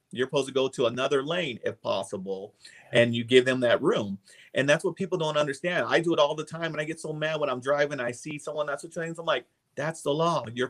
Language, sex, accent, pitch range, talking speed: English, male, American, 120-155 Hz, 270 wpm